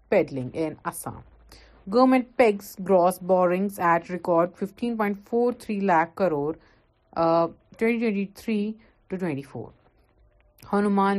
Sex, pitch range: female, 165-205 Hz